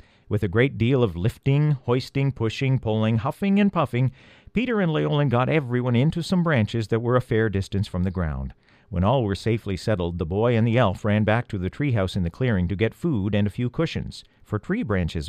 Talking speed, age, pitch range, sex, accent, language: 220 wpm, 50-69, 100-145 Hz, male, American, English